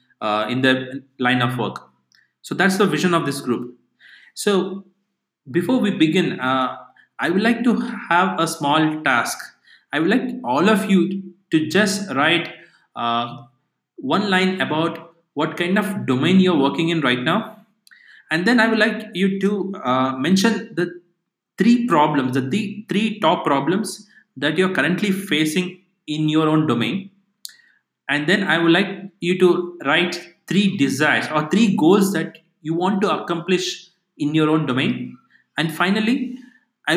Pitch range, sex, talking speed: 145-195 Hz, male, 155 wpm